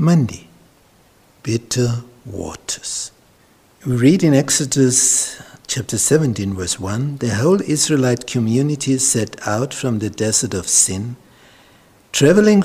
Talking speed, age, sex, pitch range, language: 110 wpm, 60-79, male, 105-135 Hz, English